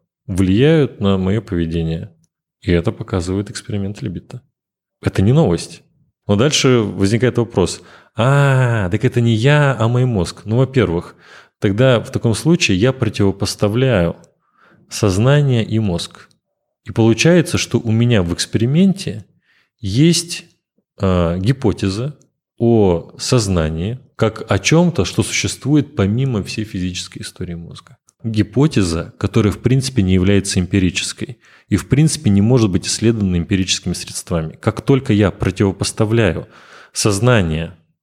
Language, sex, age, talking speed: Russian, male, 30-49, 125 wpm